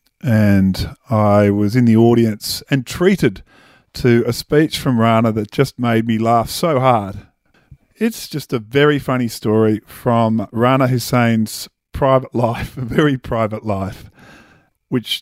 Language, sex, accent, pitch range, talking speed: English, male, Australian, 110-135 Hz, 140 wpm